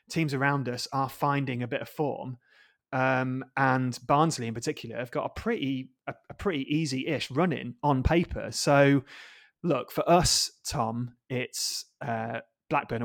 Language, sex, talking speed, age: English, male, 150 wpm, 30-49